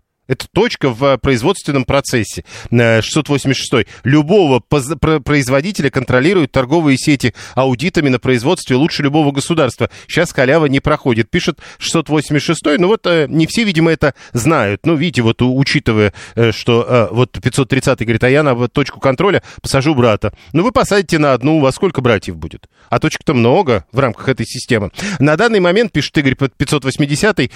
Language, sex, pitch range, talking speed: Russian, male, 125-155 Hz, 150 wpm